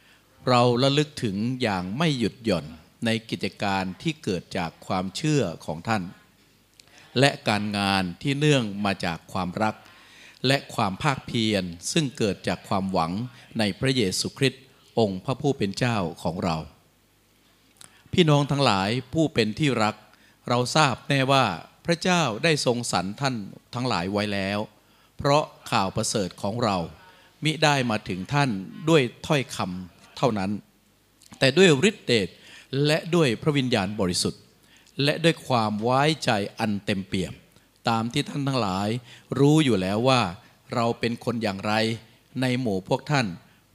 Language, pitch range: Thai, 100-140 Hz